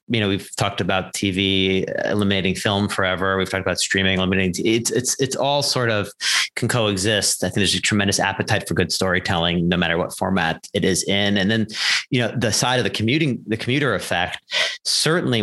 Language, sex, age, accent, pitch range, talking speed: English, male, 30-49, American, 95-110 Hz, 200 wpm